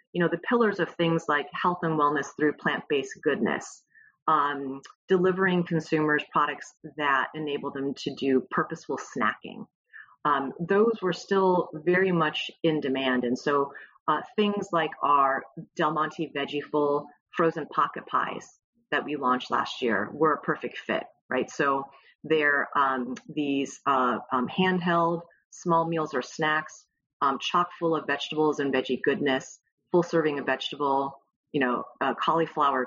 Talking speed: 150 wpm